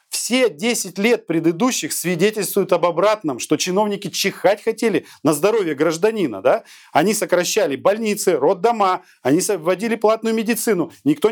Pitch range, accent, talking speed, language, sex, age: 175-230 Hz, native, 120 wpm, Russian, male, 40-59